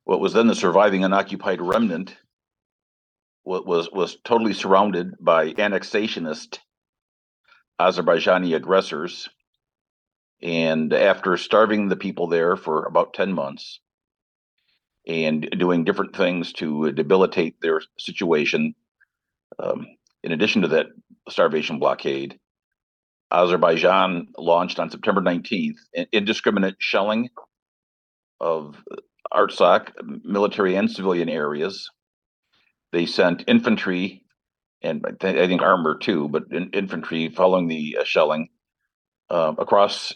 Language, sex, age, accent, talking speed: English, male, 50-69, American, 105 wpm